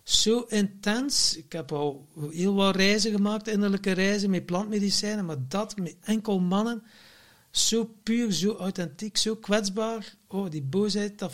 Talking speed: 150 wpm